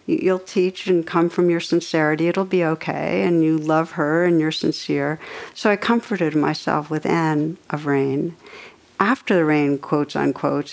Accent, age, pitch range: American, 60-79, 160-195 Hz